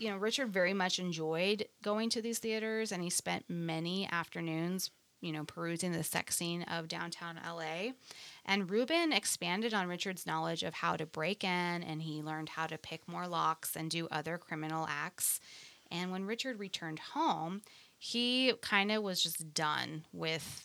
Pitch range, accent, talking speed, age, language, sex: 160-210 Hz, American, 175 wpm, 20-39, English, female